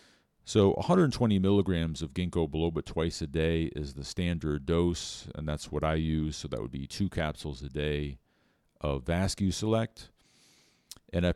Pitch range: 75-95 Hz